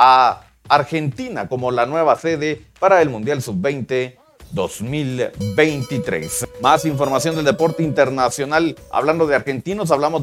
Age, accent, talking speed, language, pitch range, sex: 40-59, Mexican, 115 wpm, Spanish, 130-160 Hz, male